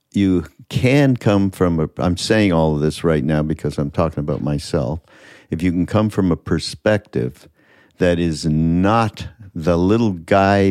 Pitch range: 80-100 Hz